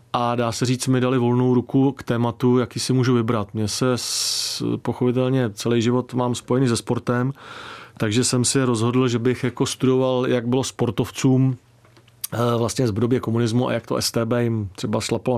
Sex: male